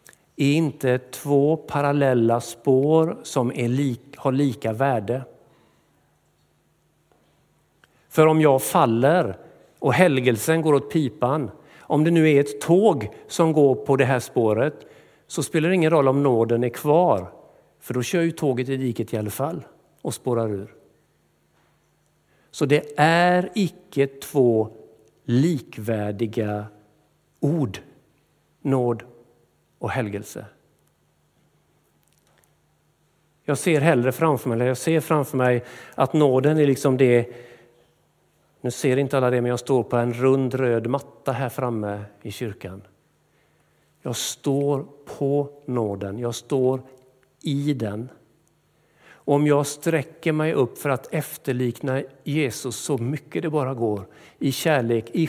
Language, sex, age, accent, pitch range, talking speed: Swedish, male, 50-69, native, 120-150 Hz, 130 wpm